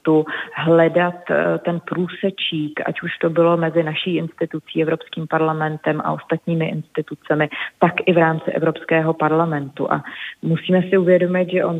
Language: Czech